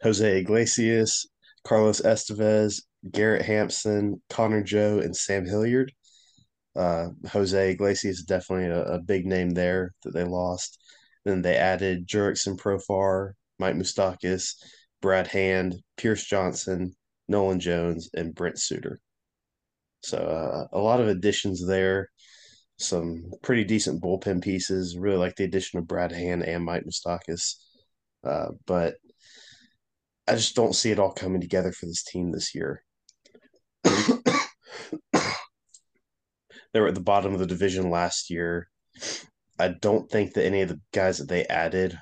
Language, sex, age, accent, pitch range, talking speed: English, male, 20-39, American, 85-100 Hz, 140 wpm